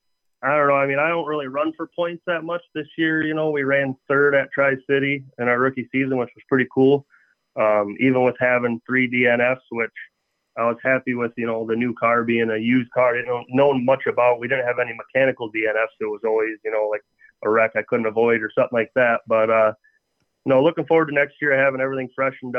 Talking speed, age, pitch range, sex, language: 235 wpm, 30-49, 115-140 Hz, male, English